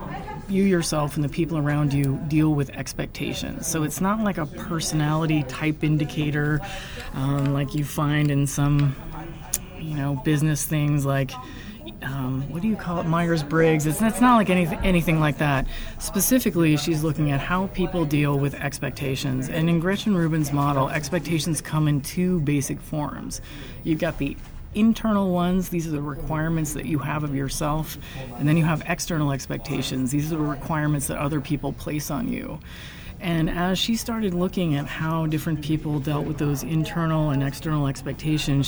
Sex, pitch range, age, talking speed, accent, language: female, 140-165 Hz, 30-49, 170 wpm, American, German